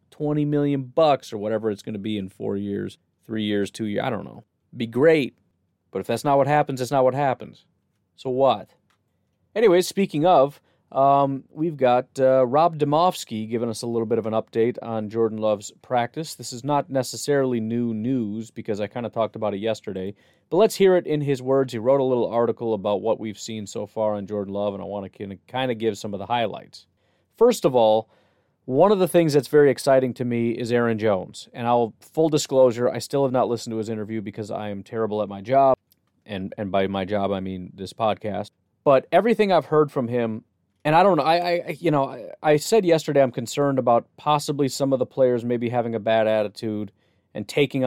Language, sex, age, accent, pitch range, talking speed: English, male, 30-49, American, 110-135 Hz, 220 wpm